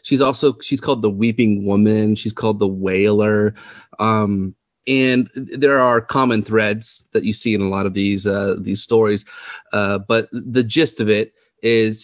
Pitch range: 100-115 Hz